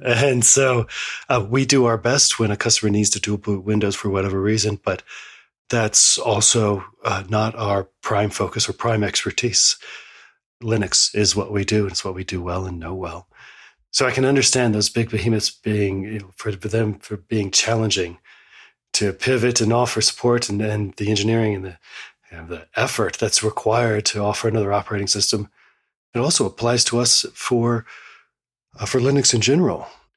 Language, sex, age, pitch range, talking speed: English, male, 40-59, 105-120 Hz, 175 wpm